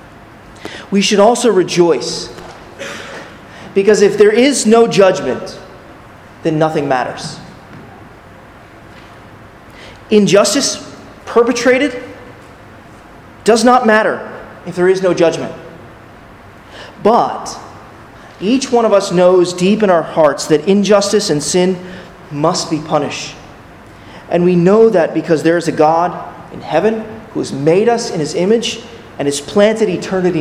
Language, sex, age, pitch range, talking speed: English, male, 30-49, 155-215 Hz, 120 wpm